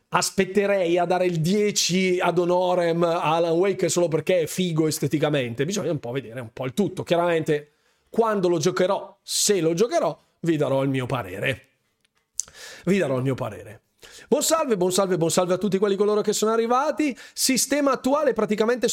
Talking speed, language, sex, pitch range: 180 wpm, Italian, male, 155-205 Hz